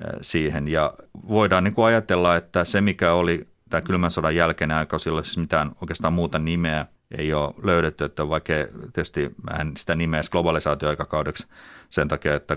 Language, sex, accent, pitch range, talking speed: Finnish, male, native, 75-85 Hz, 160 wpm